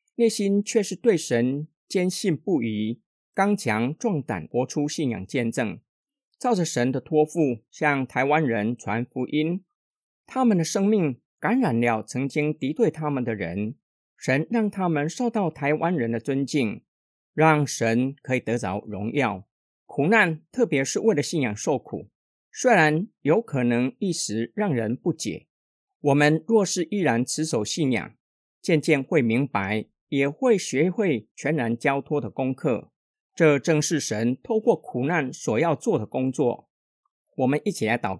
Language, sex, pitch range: Chinese, male, 125-185 Hz